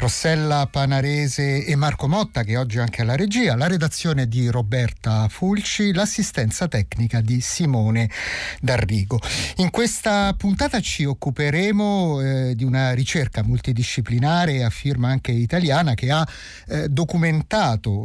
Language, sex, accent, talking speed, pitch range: Italian, male, native, 130 wpm, 120-170 Hz